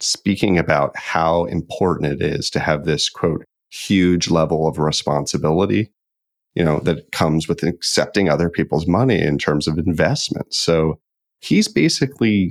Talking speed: 145 wpm